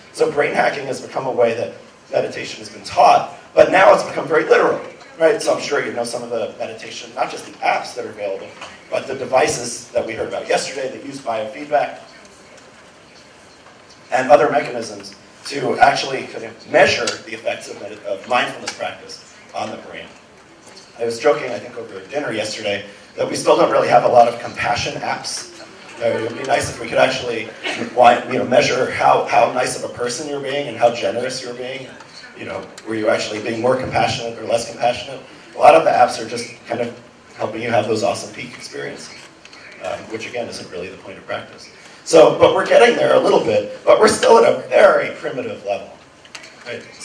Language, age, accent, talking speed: English, 30-49, American, 205 wpm